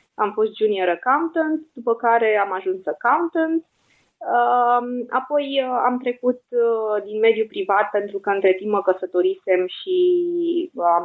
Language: Romanian